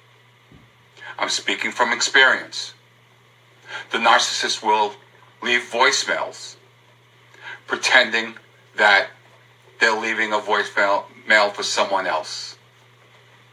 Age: 50-69